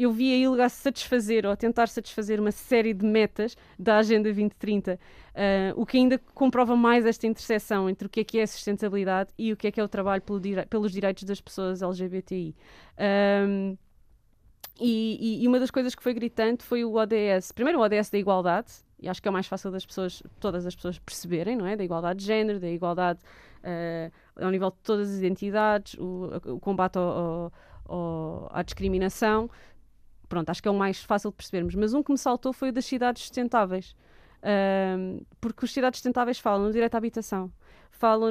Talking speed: 205 wpm